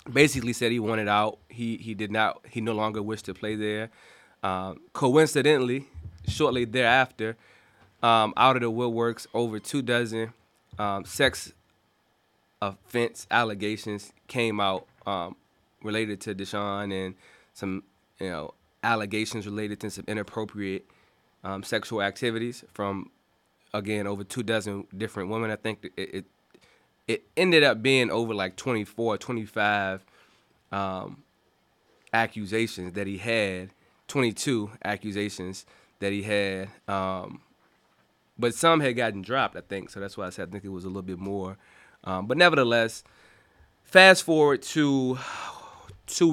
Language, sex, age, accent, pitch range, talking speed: English, male, 20-39, American, 100-120 Hz, 140 wpm